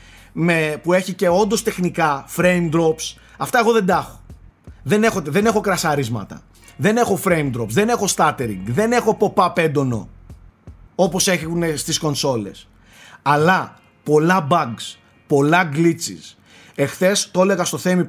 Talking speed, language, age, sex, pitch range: 135 wpm, Greek, 30-49, male, 135-195 Hz